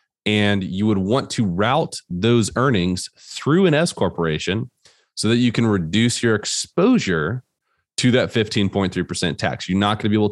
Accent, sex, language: American, male, English